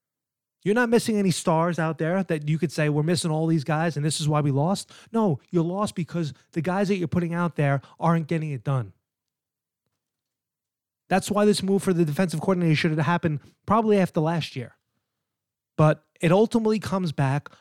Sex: male